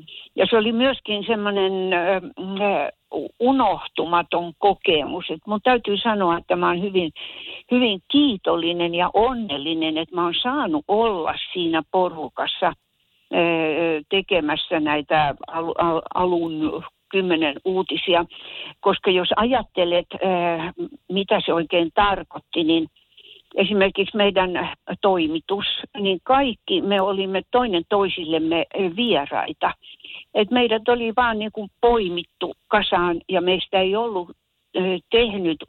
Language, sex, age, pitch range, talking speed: Finnish, female, 60-79, 170-220 Hz, 100 wpm